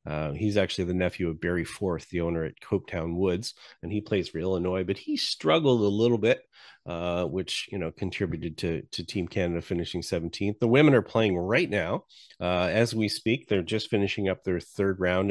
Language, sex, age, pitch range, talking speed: English, male, 30-49, 85-105 Hz, 205 wpm